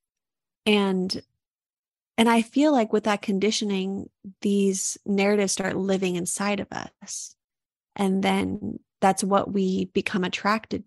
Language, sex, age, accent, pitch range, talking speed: English, female, 30-49, American, 185-215 Hz, 120 wpm